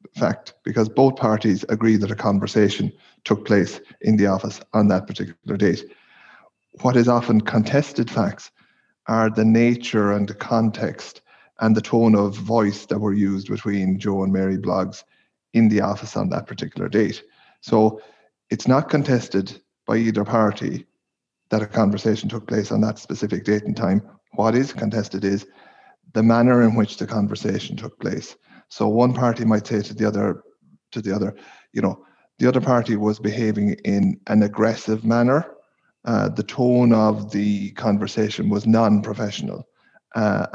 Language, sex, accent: English, male, Irish